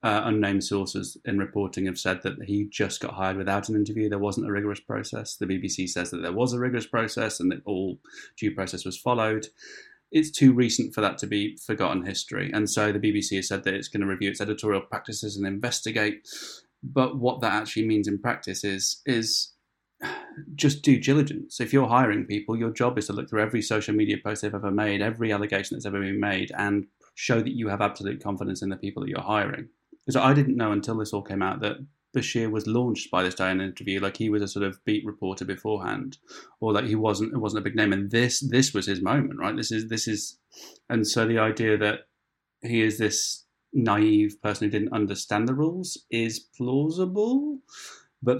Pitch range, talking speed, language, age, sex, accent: 100-120 Hz, 220 wpm, English, 20-39, male, British